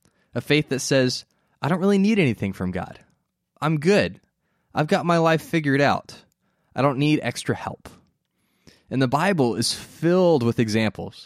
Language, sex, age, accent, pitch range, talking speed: English, male, 20-39, American, 110-145 Hz, 165 wpm